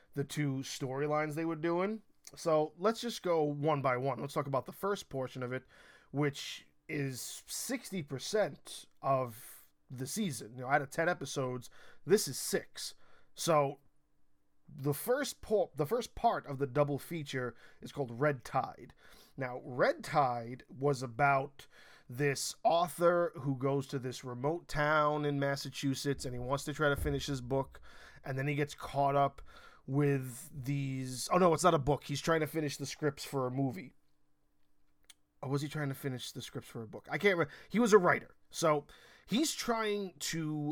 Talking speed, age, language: 180 wpm, 20-39, English